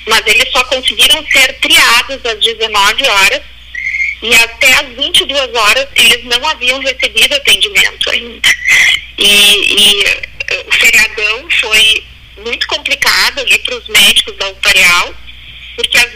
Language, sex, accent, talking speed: Portuguese, female, Brazilian, 130 wpm